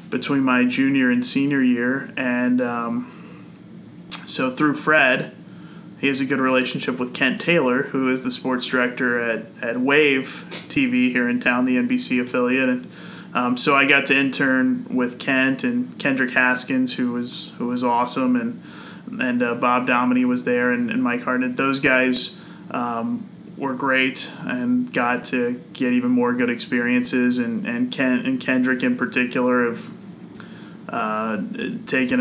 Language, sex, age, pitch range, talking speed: English, male, 20-39, 125-170 Hz, 160 wpm